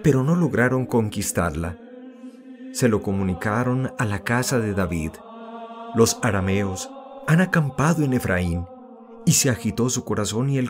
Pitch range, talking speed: 100-155 Hz, 140 wpm